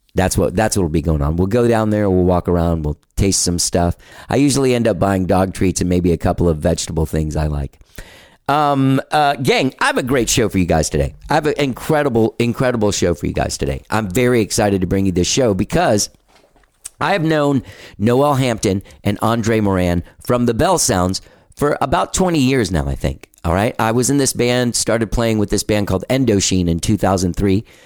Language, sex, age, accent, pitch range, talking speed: English, male, 40-59, American, 90-120 Hz, 220 wpm